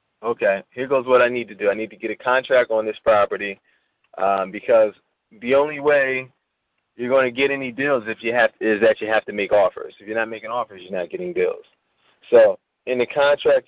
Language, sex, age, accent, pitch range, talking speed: English, male, 20-39, American, 105-130 Hz, 225 wpm